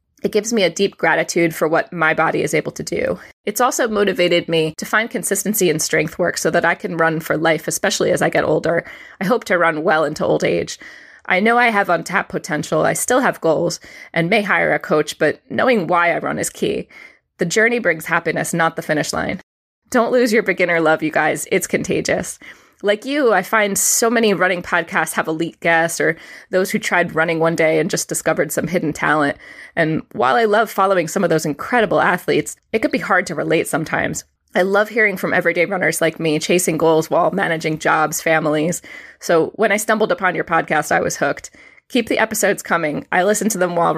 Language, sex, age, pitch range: English, female, 20-39, 165-210 Hz